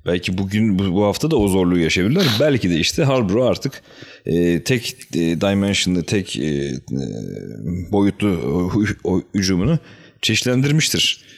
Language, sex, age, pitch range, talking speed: Turkish, male, 40-59, 95-125 Hz, 130 wpm